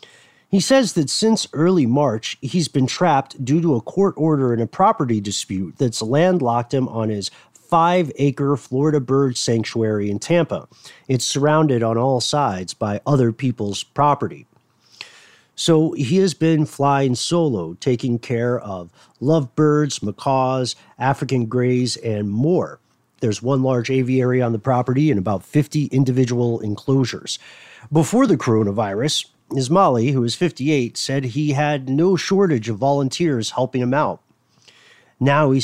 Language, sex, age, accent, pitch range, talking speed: English, male, 40-59, American, 120-150 Hz, 140 wpm